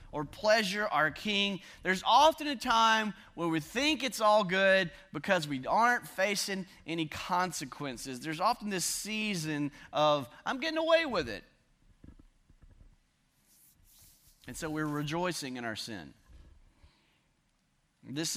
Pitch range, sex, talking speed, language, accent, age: 140-200 Hz, male, 125 wpm, English, American, 40-59